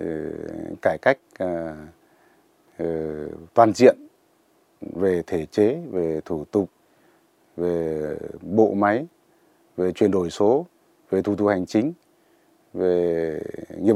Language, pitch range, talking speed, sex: Vietnamese, 85-110 Hz, 105 wpm, male